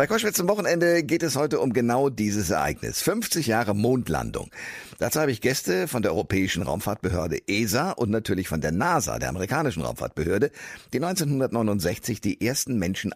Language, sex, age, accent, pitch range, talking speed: German, male, 50-69, German, 90-120 Hz, 165 wpm